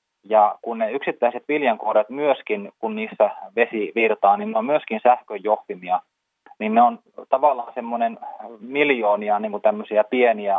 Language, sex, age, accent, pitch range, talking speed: Finnish, male, 30-49, native, 105-140 Hz, 135 wpm